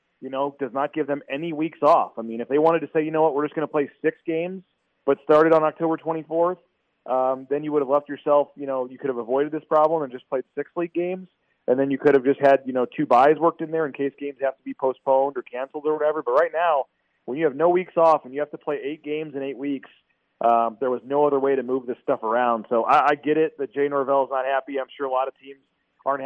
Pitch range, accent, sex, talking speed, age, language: 130-155 Hz, American, male, 285 wpm, 30-49, English